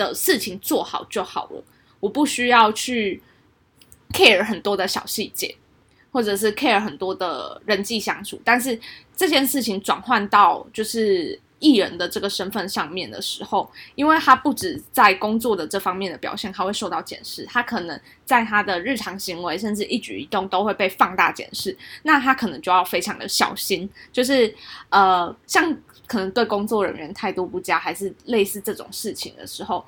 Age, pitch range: 10-29, 195-245 Hz